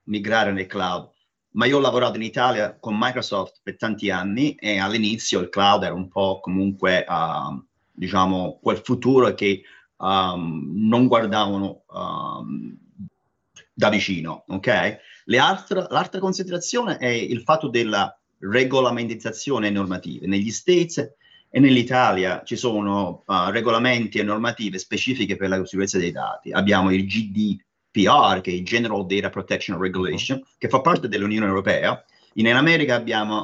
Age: 30-49